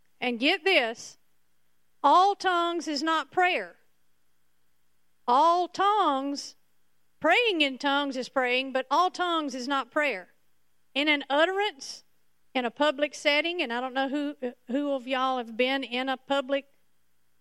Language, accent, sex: English, American, female